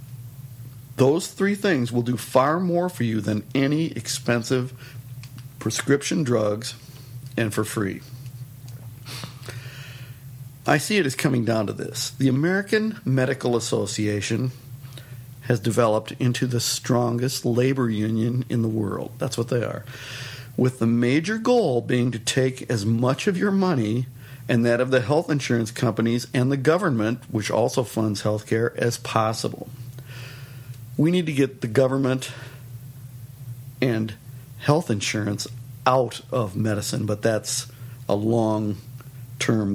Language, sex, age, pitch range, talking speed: English, male, 50-69, 120-130 Hz, 135 wpm